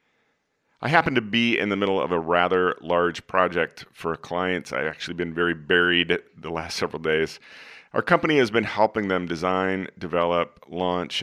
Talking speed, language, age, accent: 175 wpm, English, 40-59, American